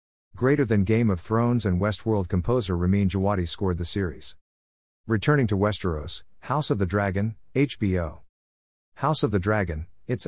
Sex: male